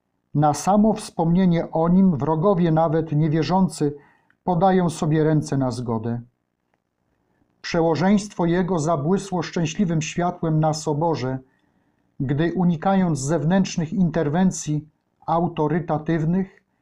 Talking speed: 90 wpm